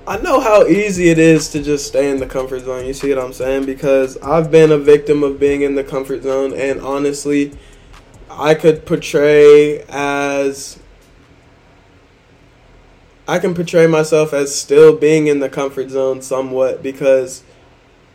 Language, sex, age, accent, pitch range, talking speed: English, male, 20-39, American, 135-160 Hz, 160 wpm